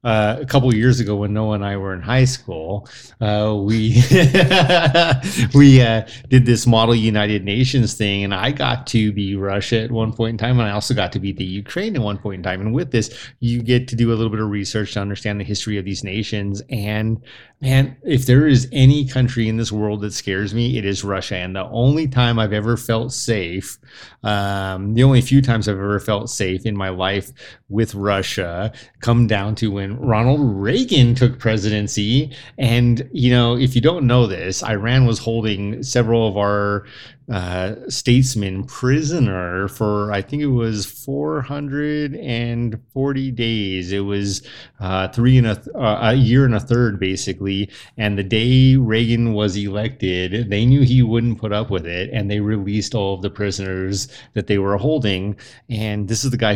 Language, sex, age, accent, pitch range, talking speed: English, male, 30-49, American, 100-125 Hz, 190 wpm